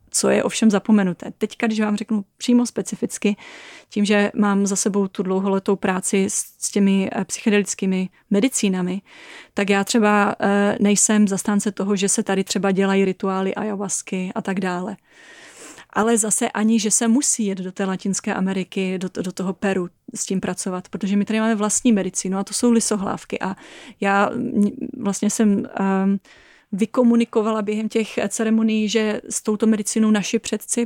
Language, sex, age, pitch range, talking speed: Czech, female, 30-49, 195-220 Hz, 165 wpm